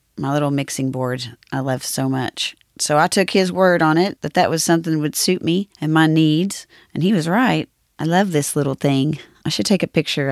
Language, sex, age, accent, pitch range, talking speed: English, female, 40-59, American, 140-175 Hz, 235 wpm